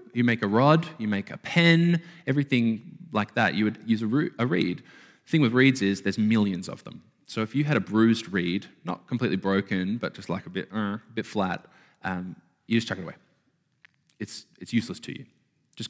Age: 20-39